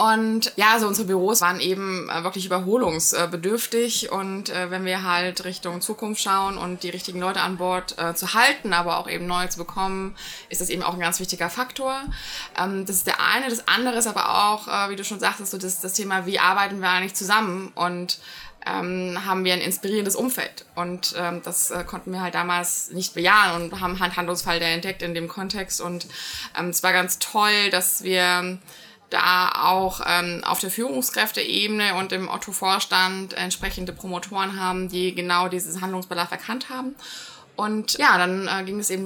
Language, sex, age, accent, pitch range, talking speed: German, female, 20-39, German, 180-205 Hz, 175 wpm